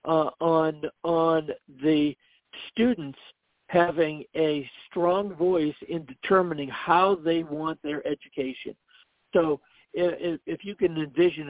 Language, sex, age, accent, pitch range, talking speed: English, male, 60-79, American, 140-170 Hz, 115 wpm